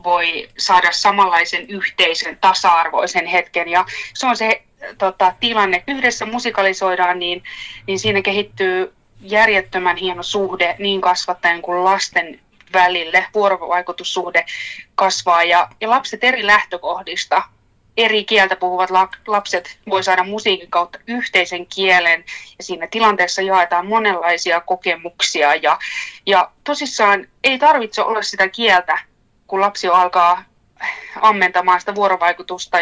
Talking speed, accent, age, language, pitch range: 120 wpm, native, 20-39, Finnish, 175-205 Hz